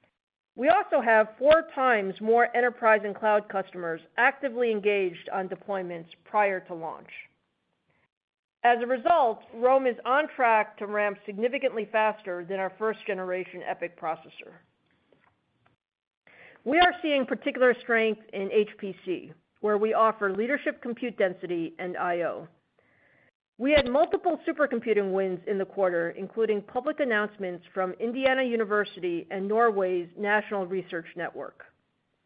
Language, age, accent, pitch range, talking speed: English, 50-69, American, 190-240 Hz, 125 wpm